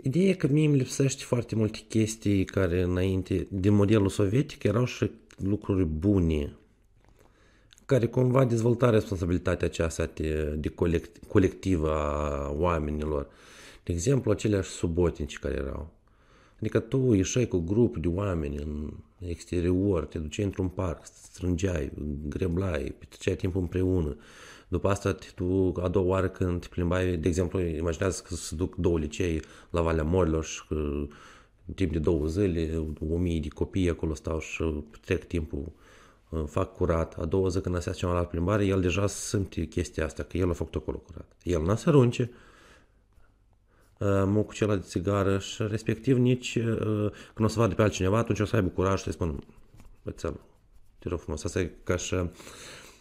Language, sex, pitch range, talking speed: Romanian, male, 85-105 Hz, 155 wpm